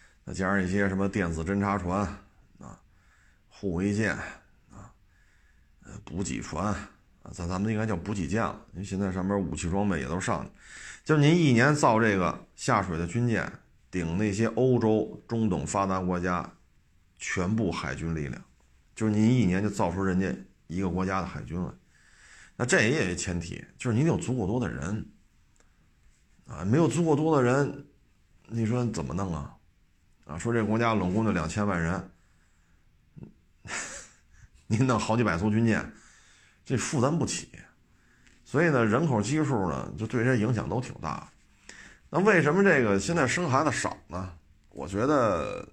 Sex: male